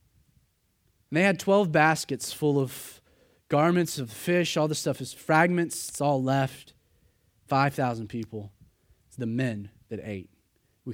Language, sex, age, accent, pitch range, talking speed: English, male, 30-49, American, 110-155 Hz, 145 wpm